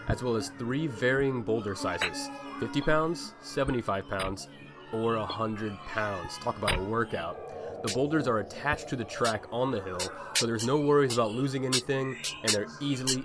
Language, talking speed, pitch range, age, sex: English, 170 wpm, 105-135 Hz, 20-39, male